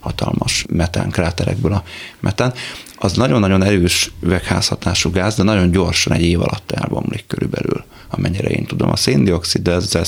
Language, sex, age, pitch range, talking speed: Hungarian, male, 30-49, 85-100 Hz, 145 wpm